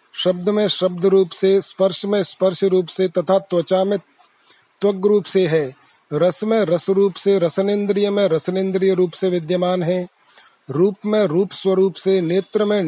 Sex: male